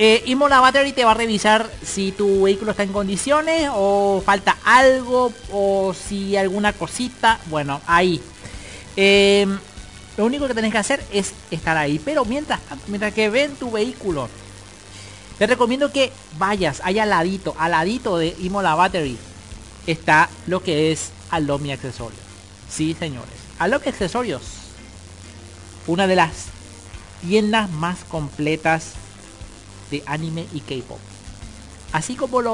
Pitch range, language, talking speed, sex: 135-205 Hz, Spanish, 140 wpm, male